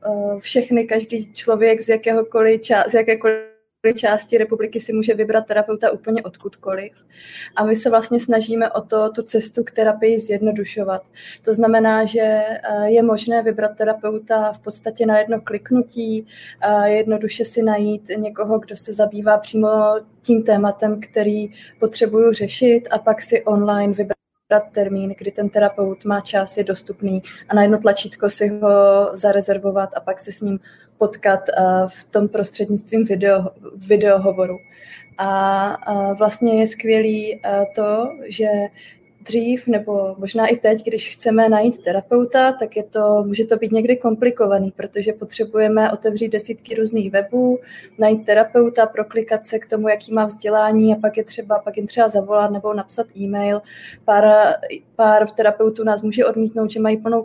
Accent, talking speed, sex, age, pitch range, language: native, 150 wpm, female, 20-39, 205-225 Hz, Czech